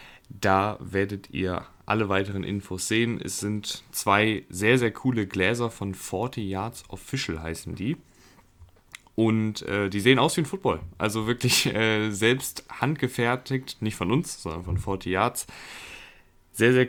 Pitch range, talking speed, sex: 95-115 Hz, 150 wpm, male